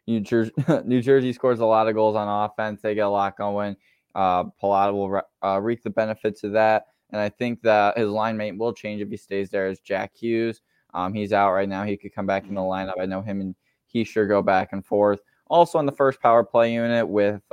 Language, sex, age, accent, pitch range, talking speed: English, male, 10-29, American, 100-115 Hz, 245 wpm